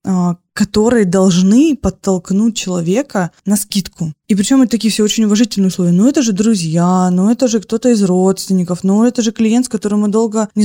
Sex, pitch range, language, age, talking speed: female, 190-225 Hz, Russian, 20-39, 185 wpm